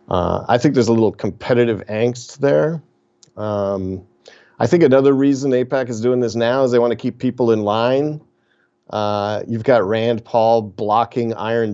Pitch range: 100-120 Hz